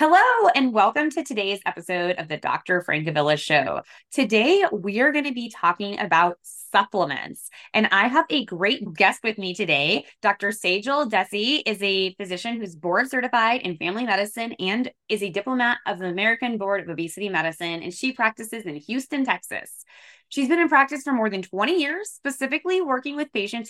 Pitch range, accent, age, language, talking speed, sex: 185-260 Hz, American, 20-39, English, 180 wpm, female